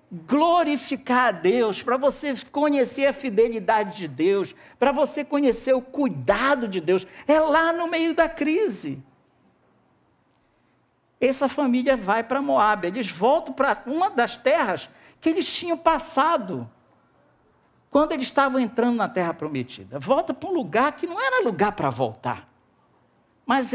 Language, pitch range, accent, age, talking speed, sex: Portuguese, 200-295 Hz, Brazilian, 50-69, 140 wpm, male